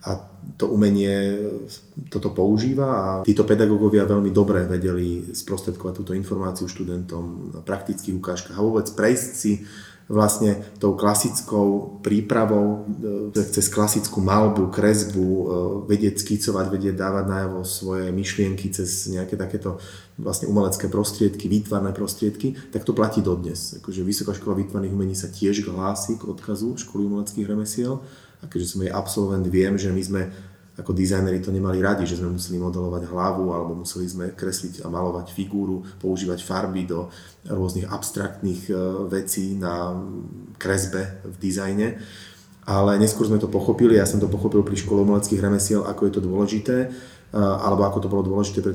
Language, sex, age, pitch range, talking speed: Slovak, male, 30-49, 95-105 Hz, 150 wpm